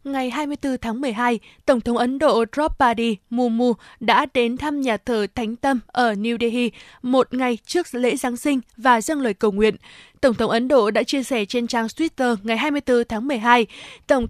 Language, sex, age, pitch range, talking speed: Vietnamese, female, 20-39, 225-280 Hz, 195 wpm